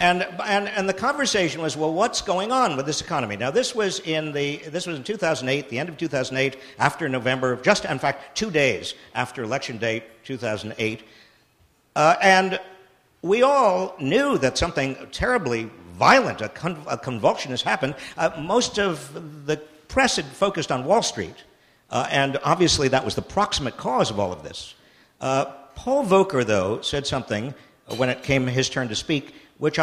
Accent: American